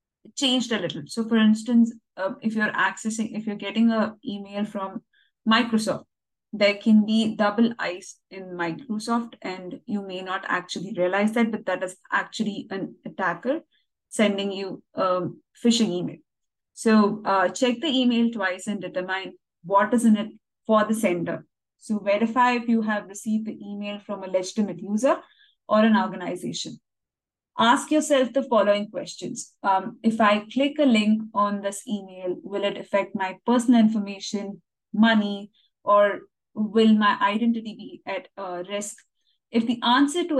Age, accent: 20-39, Indian